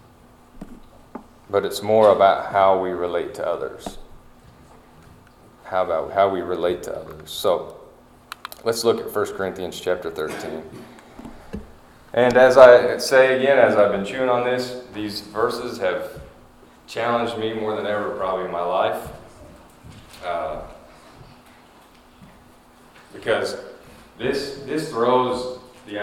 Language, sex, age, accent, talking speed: English, male, 30-49, American, 120 wpm